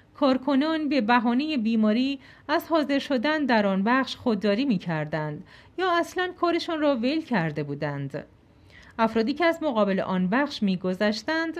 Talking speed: 135 wpm